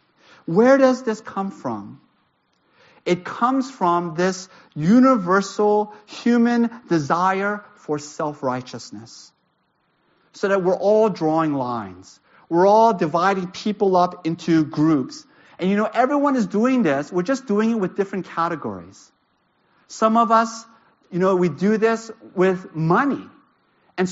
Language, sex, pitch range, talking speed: English, male, 175-220 Hz, 130 wpm